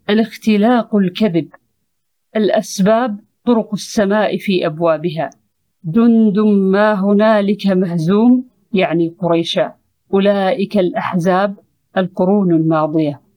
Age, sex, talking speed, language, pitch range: 50-69, female, 75 wpm, Arabic, 170-215 Hz